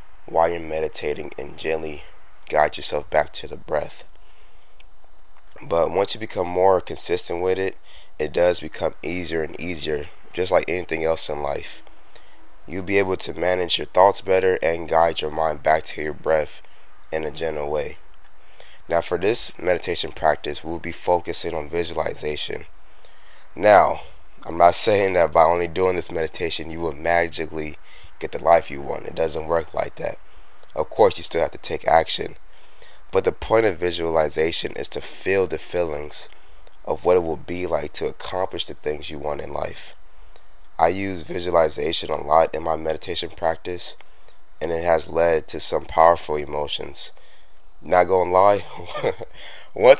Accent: American